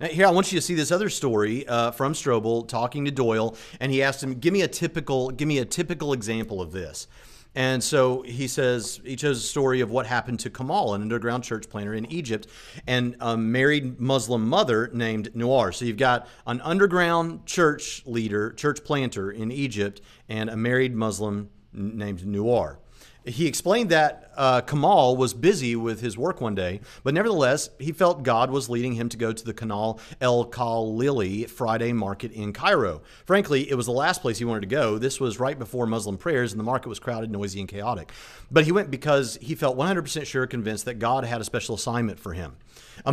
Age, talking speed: 40-59, 205 wpm